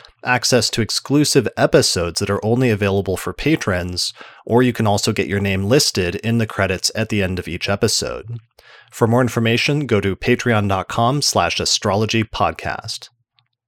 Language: English